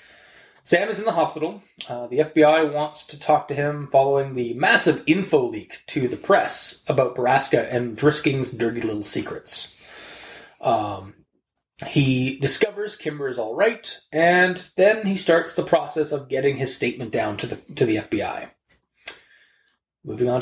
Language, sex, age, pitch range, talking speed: English, male, 20-39, 130-175 Hz, 150 wpm